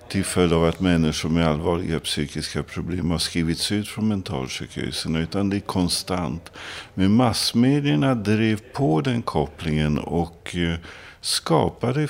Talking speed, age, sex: 130 wpm, 50-69, male